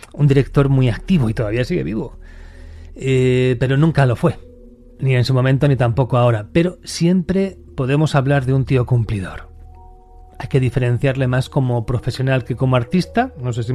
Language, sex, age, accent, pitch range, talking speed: Spanish, male, 30-49, Spanish, 120-140 Hz, 175 wpm